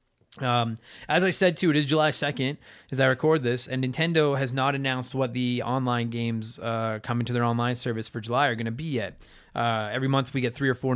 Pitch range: 120-145 Hz